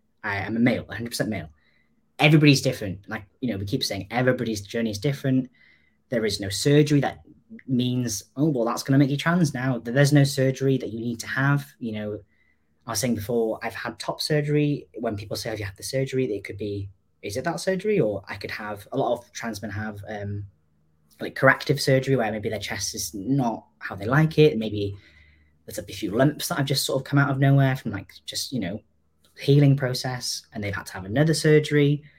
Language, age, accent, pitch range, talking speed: English, 20-39, British, 100-145 Hz, 220 wpm